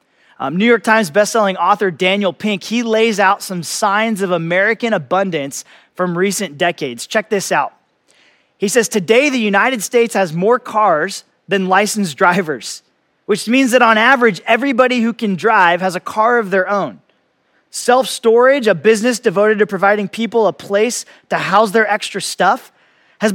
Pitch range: 190-235 Hz